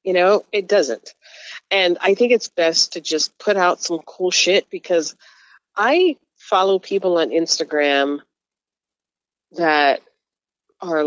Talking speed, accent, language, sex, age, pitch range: 130 wpm, American, English, female, 40-59, 155-210 Hz